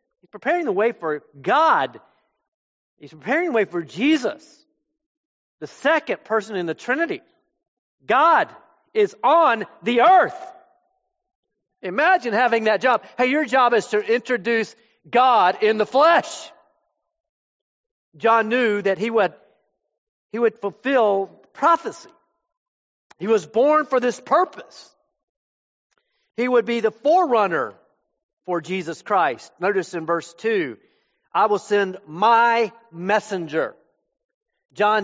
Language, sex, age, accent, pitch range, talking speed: English, male, 50-69, American, 210-325 Hz, 120 wpm